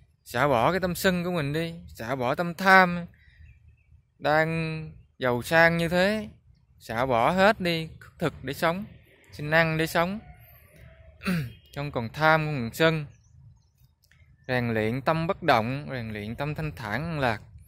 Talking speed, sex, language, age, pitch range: 155 wpm, male, Vietnamese, 20-39, 110-165 Hz